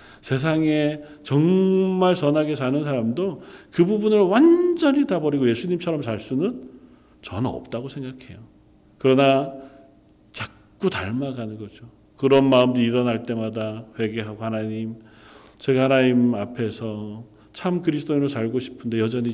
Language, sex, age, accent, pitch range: Korean, male, 40-59, native, 105-140 Hz